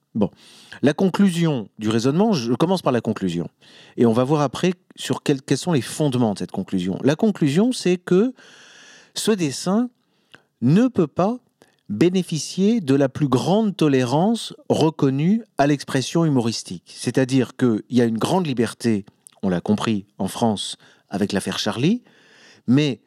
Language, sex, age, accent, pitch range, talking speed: French, male, 50-69, French, 115-180 Hz, 155 wpm